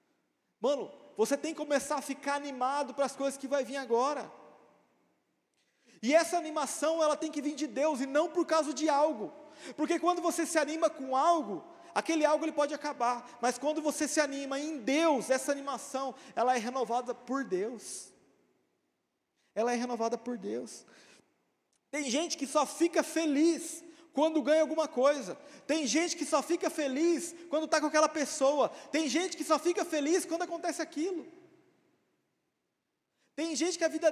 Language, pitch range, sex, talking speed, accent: Portuguese, 275-320 Hz, male, 165 wpm, Brazilian